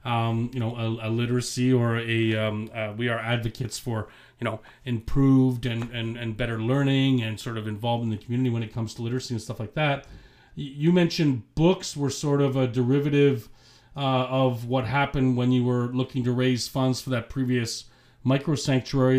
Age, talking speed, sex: 40-59, 195 wpm, male